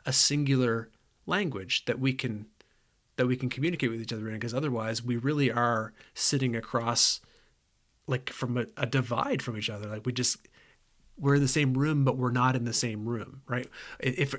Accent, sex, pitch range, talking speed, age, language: American, male, 115-135 Hz, 190 wpm, 30-49, English